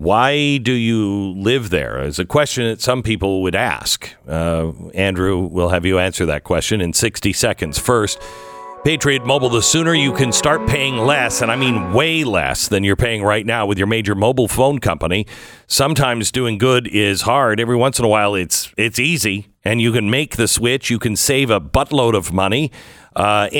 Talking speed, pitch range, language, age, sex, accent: 195 wpm, 105-135 Hz, English, 50-69, male, American